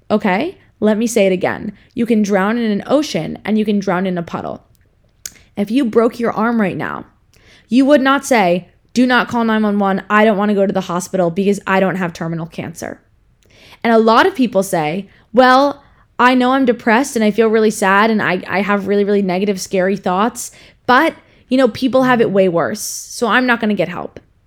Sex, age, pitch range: female, 20-39, 195-230 Hz